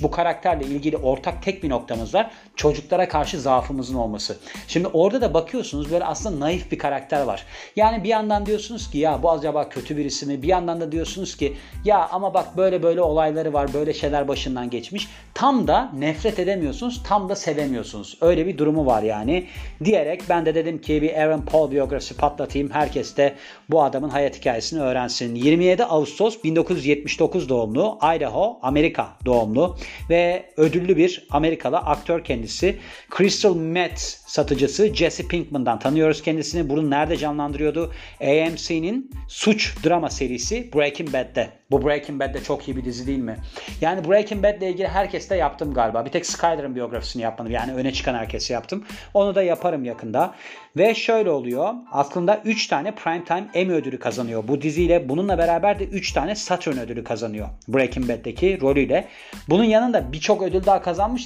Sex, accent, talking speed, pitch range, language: male, native, 165 wpm, 140-185 Hz, Turkish